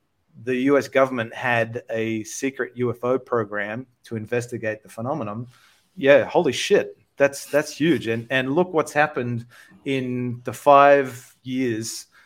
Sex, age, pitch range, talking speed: male, 30-49, 115-130 Hz, 130 wpm